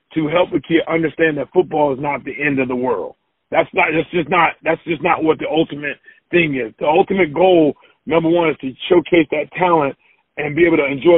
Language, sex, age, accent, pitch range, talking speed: English, male, 40-59, American, 145-175 Hz, 225 wpm